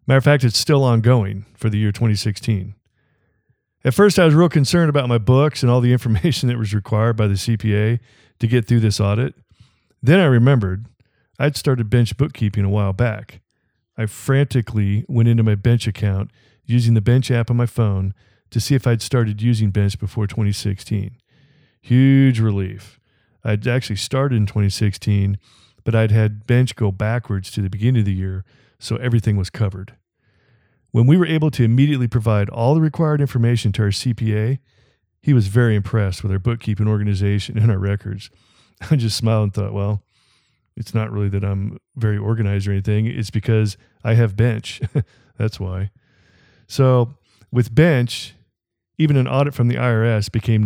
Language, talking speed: English, 175 wpm